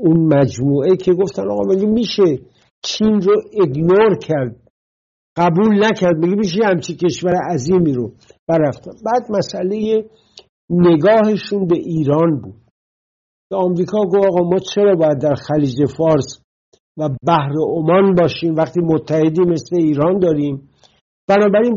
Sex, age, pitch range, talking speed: male, 60-79, 145-185 Hz, 120 wpm